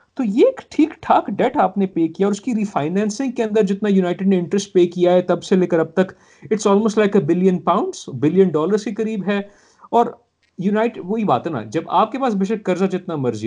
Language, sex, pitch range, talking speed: Urdu, male, 165-215 Hz, 235 wpm